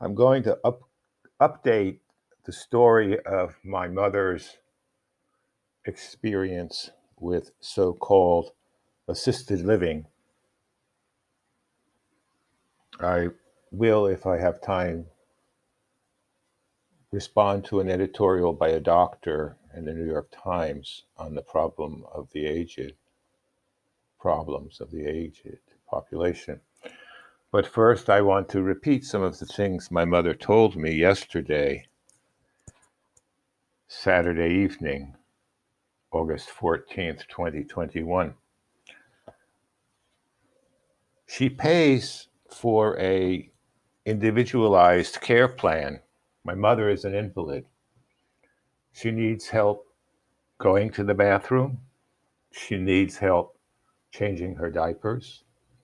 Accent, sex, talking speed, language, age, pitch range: American, male, 95 wpm, English, 60-79, 90-115 Hz